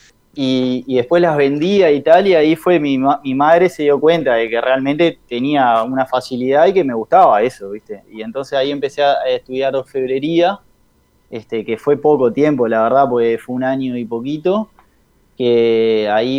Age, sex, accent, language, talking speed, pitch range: 20-39, male, Argentinian, Spanish, 185 wpm, 120-150 Hz